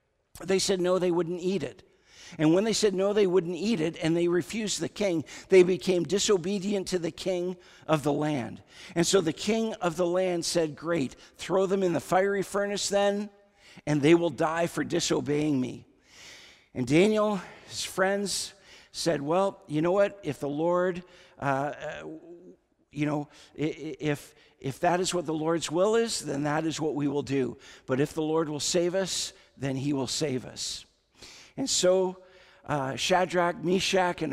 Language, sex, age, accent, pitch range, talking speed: English, male, 50-69, American, 145-180 Hz, 180 wpm